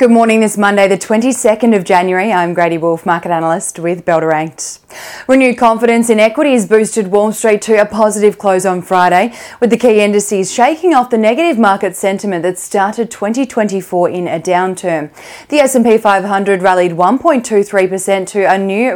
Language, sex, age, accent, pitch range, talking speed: English, female, 20-39, Australian, 185-225 Hz, 165 wpm